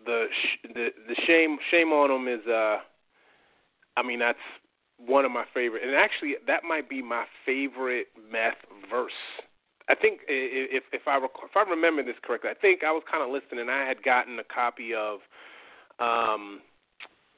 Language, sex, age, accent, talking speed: English, male, 30-49, American, 175 wpm